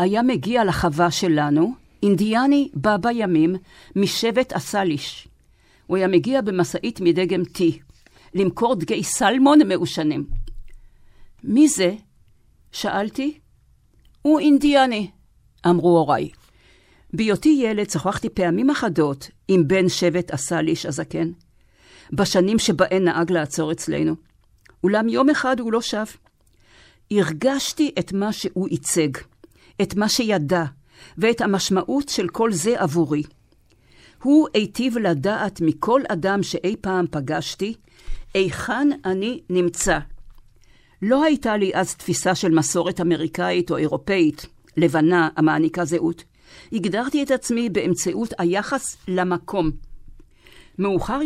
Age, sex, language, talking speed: 50-69, female, Hebrew, 110 wpm